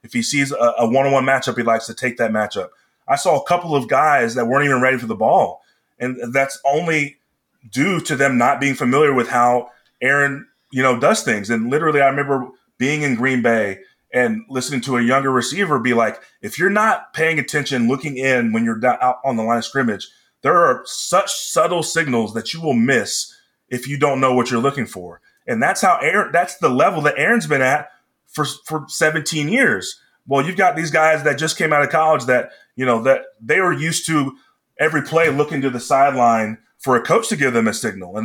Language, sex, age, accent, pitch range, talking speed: English, male, 30-49, American, 120-150 Hz, 220 wpm